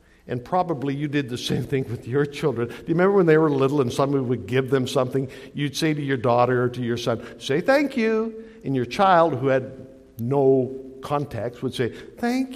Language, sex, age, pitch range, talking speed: English, male, 60-79, 120-170 Hz, 215 wpm